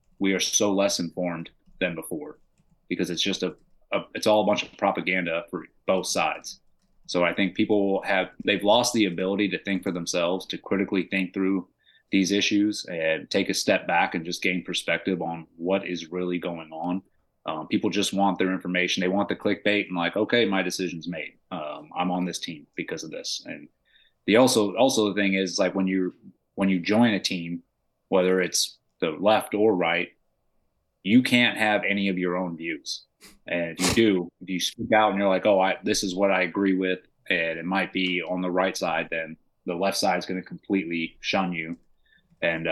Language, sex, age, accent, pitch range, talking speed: English, male, 30-49, American, 90-100 Hz, 205 wpm